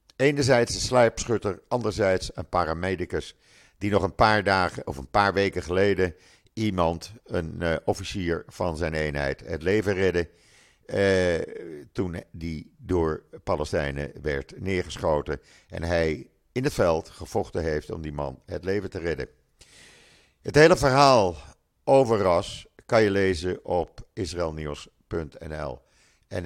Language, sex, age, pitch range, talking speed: Dutch, male, 50-69, 75-100 Hz, 130 wpm